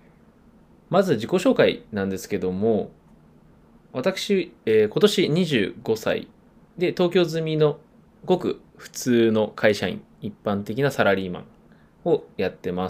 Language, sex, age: Japanese, male, 20-39